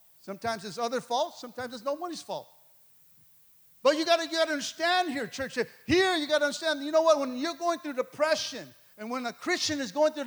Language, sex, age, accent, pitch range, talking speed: English, male, 50-69, American, 145-205 Hz, 205 wpm